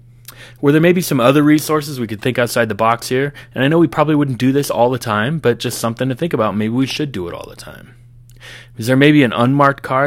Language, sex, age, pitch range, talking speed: English, male, 20-39, 105-125 Hz, 260 wpm